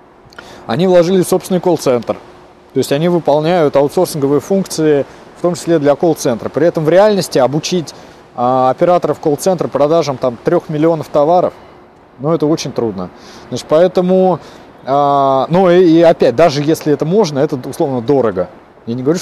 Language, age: Russian, 20-39